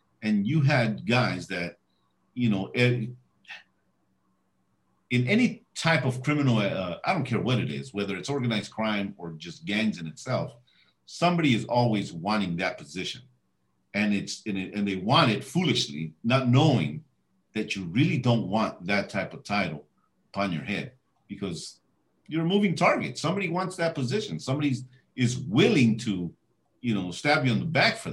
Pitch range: 95-130 Hz